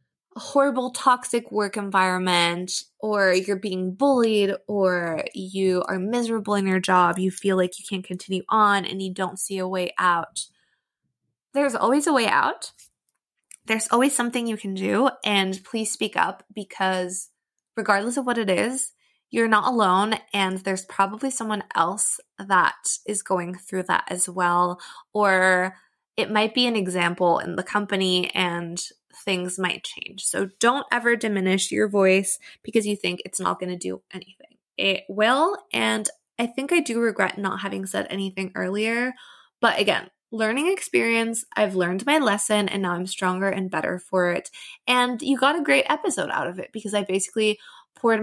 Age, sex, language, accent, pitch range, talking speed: 20-39, female, English, American, 185-235 Hz, 170 wpm